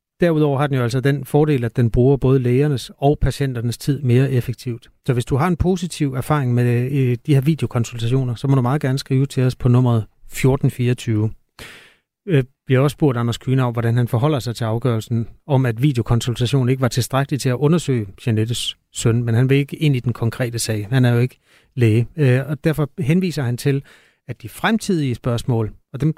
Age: 30-49